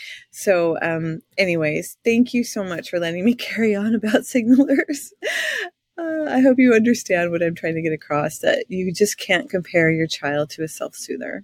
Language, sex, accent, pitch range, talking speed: English, female, American, 170-240 Hz, 185 wpm